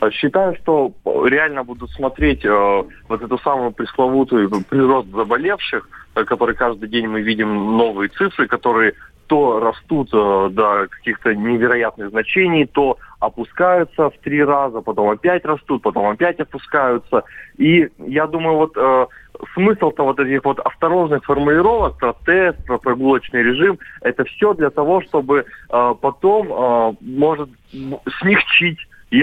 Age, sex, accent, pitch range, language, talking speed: 20-39, male, native, 115-155 Hz, Russian, 135 wpm